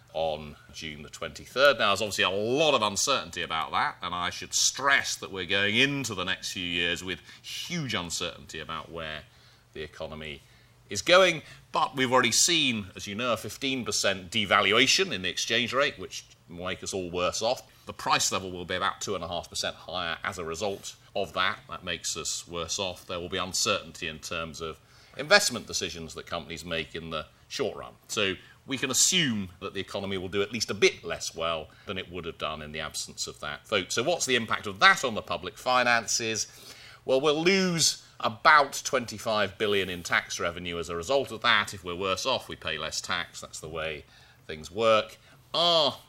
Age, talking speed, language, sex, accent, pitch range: 30-49, 205 wpm, English, male, British, 85-125 Hz